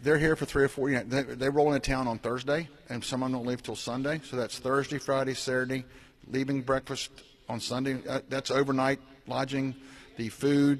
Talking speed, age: 205 wpm, 50-69